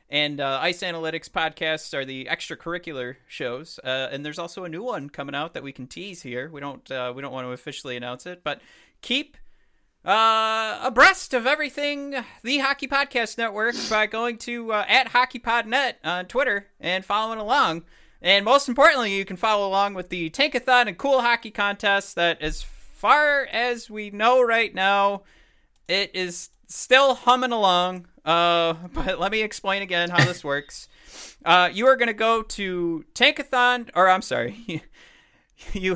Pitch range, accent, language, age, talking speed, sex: 140-225 Hz, American, English, 30-49, 170 wpm, male